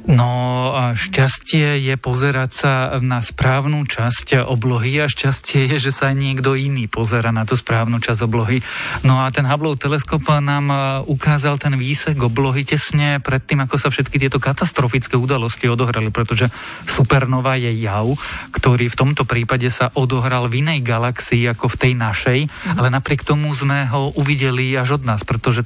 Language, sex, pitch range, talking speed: Slovak, male, 120-145 Hz, 165 wpm